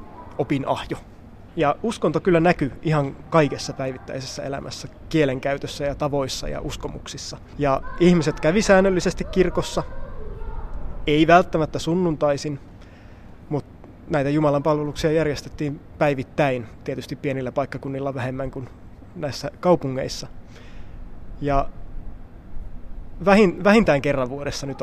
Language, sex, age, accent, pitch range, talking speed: Finnish, male, 20-39, native, 130-155 Hz, 100 wpm